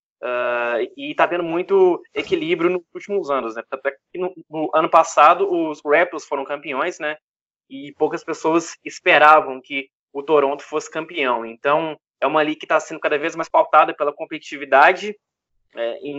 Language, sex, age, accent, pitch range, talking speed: Portuguese, male, 20-39, Brazilian, 145-205 Hz, 165 wpm